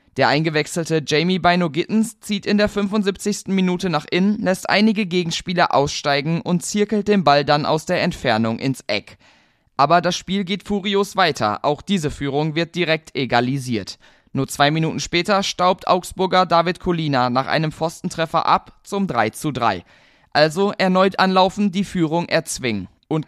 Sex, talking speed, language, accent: male, 155 wpm, German, German